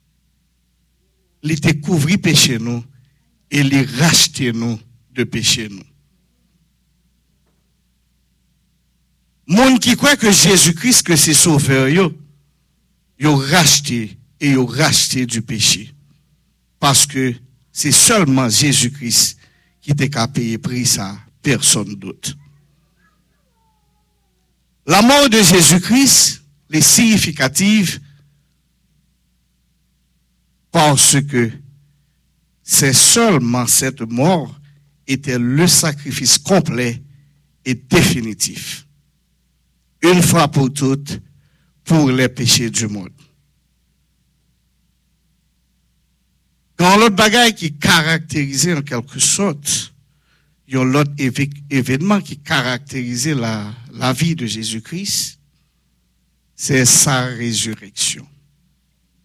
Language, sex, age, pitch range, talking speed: English, male, 60-79, 120-160 Hz, 90 wpm